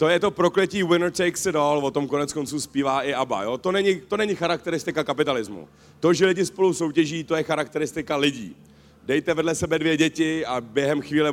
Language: Slovak